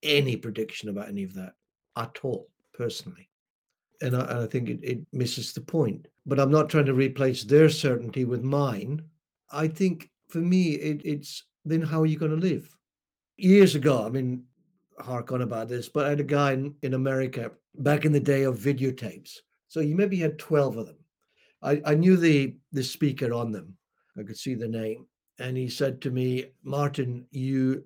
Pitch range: 125-160 Hz